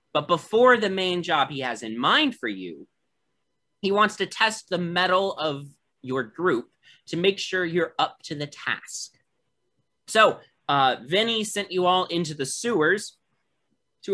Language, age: English, 30-49